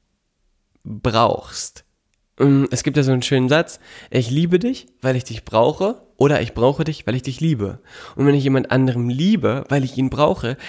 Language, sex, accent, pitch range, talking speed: German, male, German, 125-155 Hz, 185 wpm